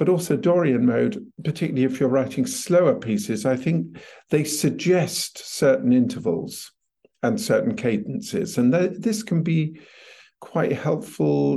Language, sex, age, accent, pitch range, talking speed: English, male, 50-69, British, 130-215 Hz, 130 wpm